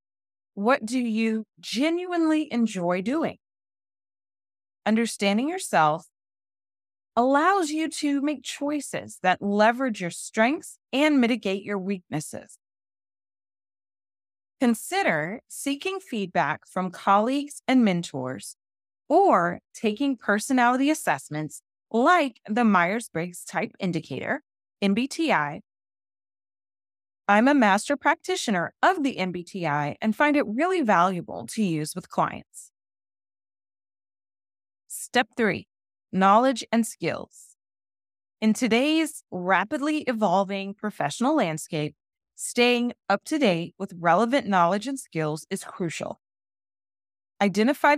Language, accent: English, American